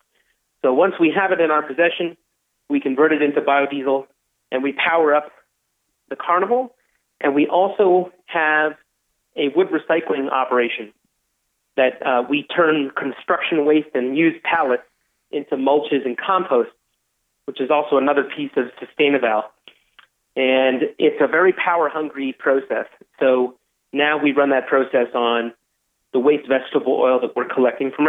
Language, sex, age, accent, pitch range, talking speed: English, male, 30-49, American, 135-165 Hz, 145 wpm